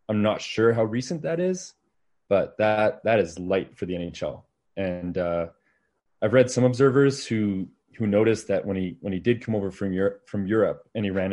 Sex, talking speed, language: male, 205 wpm, English